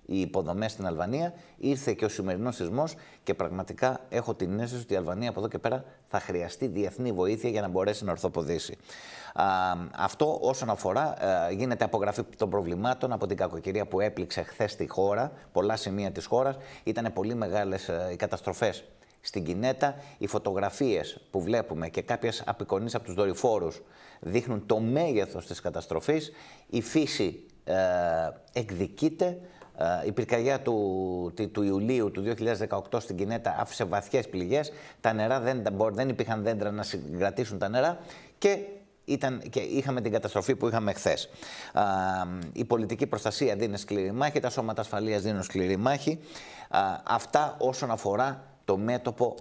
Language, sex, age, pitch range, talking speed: Greek, male, 30-49, 100-130 Hz, 150 wpm